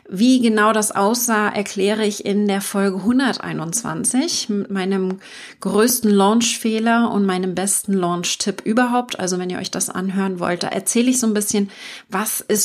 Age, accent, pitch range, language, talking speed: 30-49, German, 190-235 Hz, German, 160 wpm